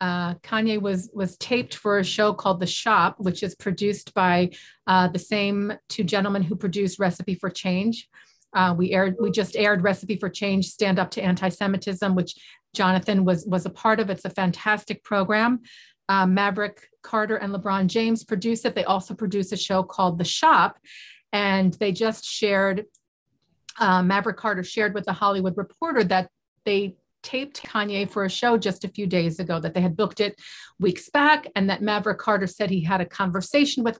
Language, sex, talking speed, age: English, female, 185 wpm, 40-59